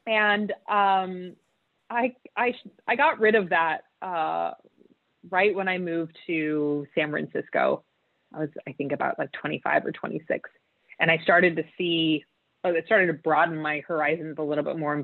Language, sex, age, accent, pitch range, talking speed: German, female, 30-49, American, 155-195 Hz, 170 wpm